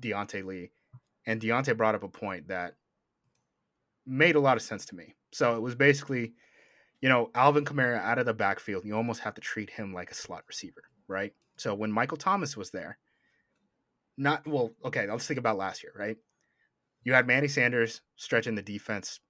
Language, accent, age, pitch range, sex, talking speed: English, American, 30-49, 110-140 Hz, male, 190 wpm